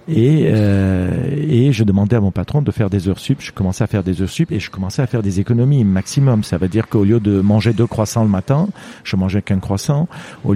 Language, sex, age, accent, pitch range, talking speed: French, male, 40-59, French, 95-130 Hz, 250 wpm